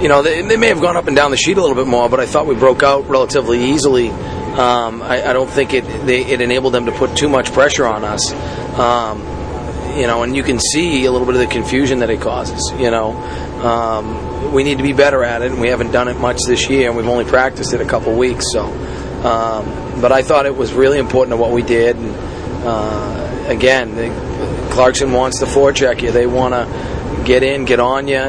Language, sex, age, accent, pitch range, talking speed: English, male, 40-59, American, 115-130 Hz, 240 wpm